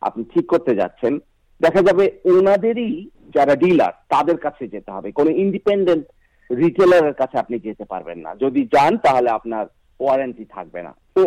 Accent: native